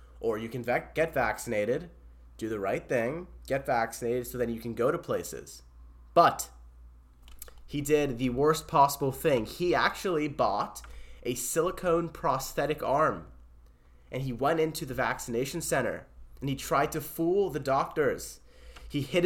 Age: 20-39